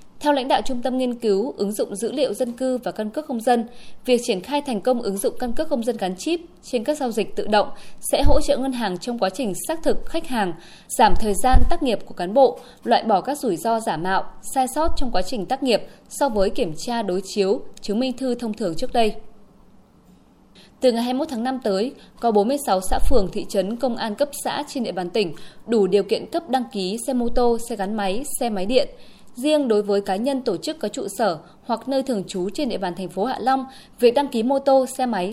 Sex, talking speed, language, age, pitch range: female, 250 wpm, Vietnamese, 20-39, 200-265 Hz